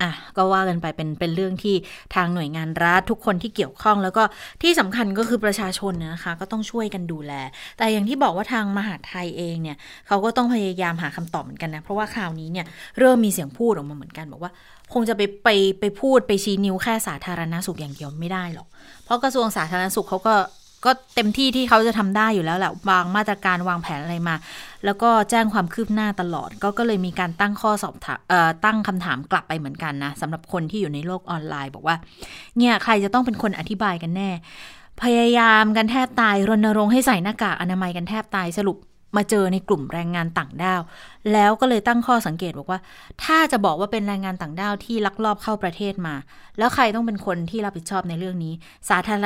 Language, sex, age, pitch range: Thai, female, 20-39, 170-215 Hz